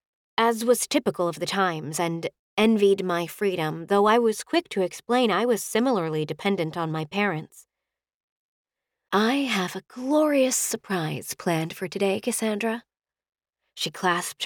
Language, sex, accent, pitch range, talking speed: English, female, American, 170-225 Hz, 140 wpm